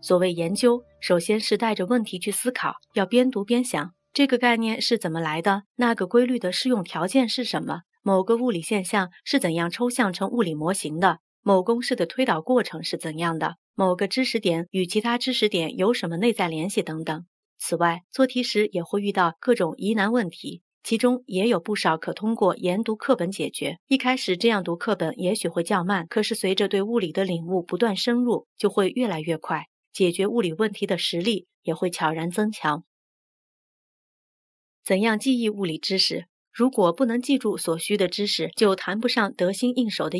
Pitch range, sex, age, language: 175-235 Hz, female, 30-49, Chinese